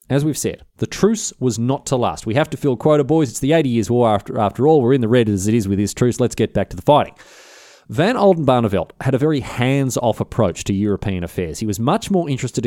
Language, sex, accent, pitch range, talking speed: English, male, Australian, 105-140 Hz, 255 wpm